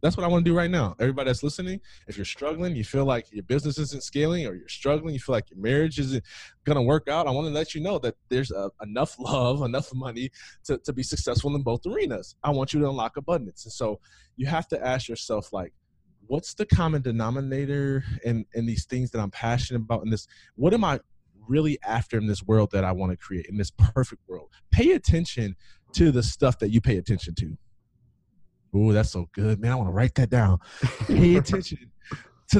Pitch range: 105-140 Hz